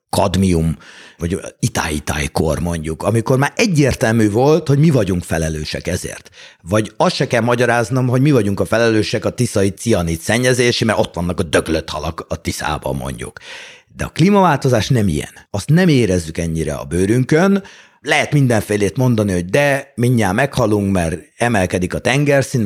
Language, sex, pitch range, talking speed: Hungarian, male, 100-145 Hz, 155 wpm